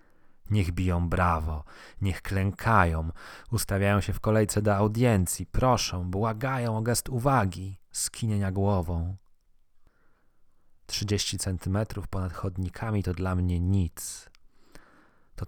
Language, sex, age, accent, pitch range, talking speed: Polish, male, 40-59, native, 85-105 Hz, 105 wpm